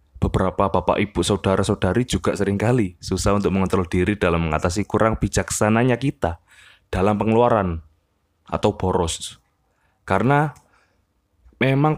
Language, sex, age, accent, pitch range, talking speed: Indonesian, male, 20-39, native, 95-120 Hz, 105 wpm